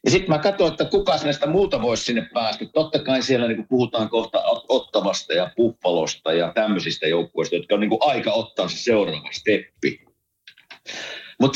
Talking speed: 165 wpm